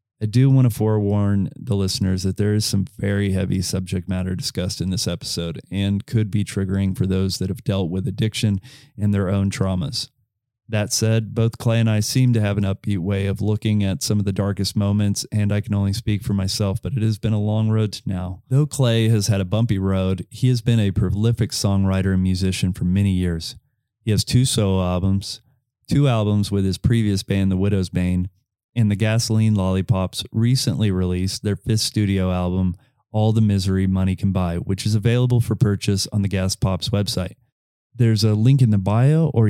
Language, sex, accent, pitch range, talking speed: English, male, American, 95-115 Hz, 205 wpm